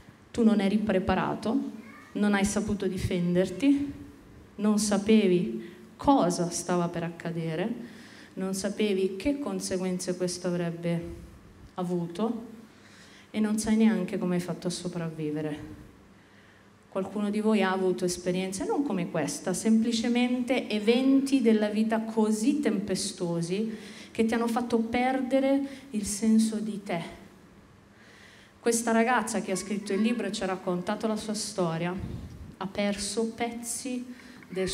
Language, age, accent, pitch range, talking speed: Italian, 30-49, native, 180-225 Hz, 125 wpm